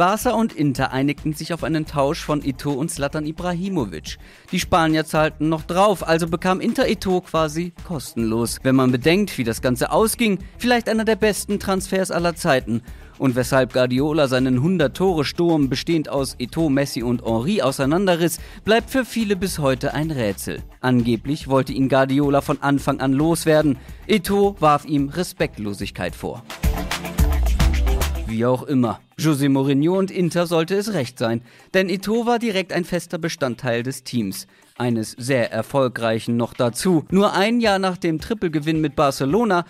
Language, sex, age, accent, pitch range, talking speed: German, male, 40-59, German, 130-185 Hz, 155 wpm